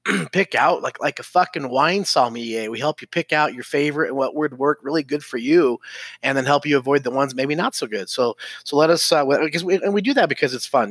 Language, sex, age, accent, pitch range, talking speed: English, male, 30-49, American, 115-150 Hz, 265 wpm